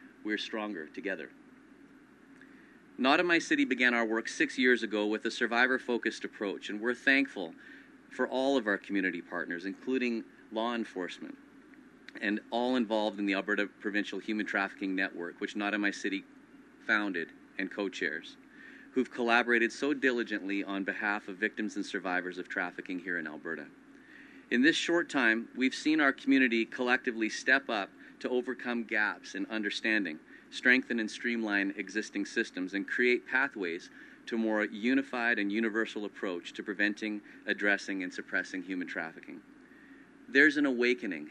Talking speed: 150 wpm